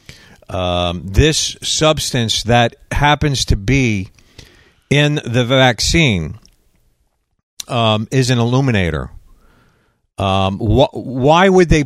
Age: 50-69